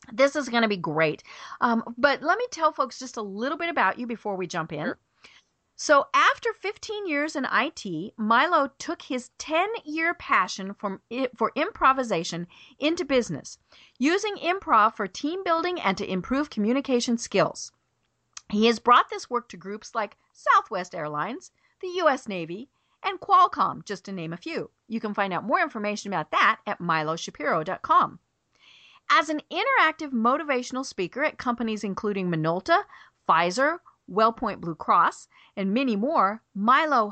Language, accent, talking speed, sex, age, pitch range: English, American, 150 wpm, female, 40-59, 205-310 Hz